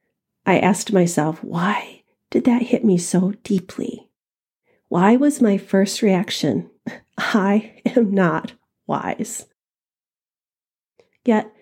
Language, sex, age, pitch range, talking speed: English, female, 40-59, 195-235 Hz, 105 wpm